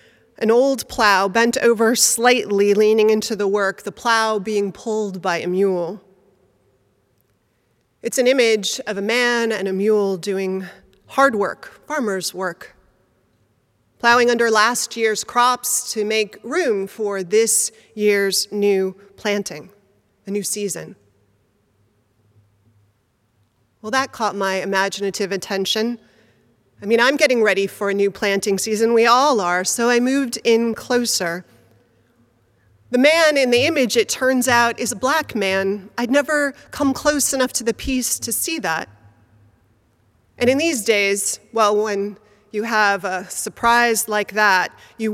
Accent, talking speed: American, 140 wpm